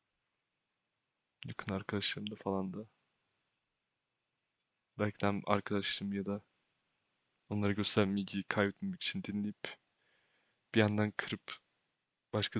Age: 20-39